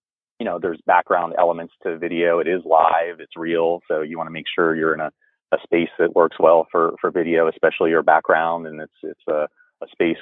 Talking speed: 225 wpm